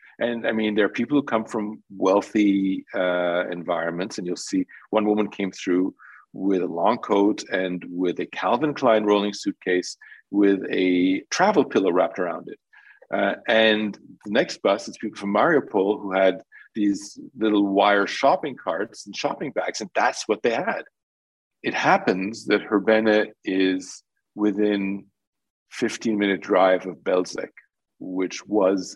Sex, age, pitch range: male, 50-69, 95-110 Hz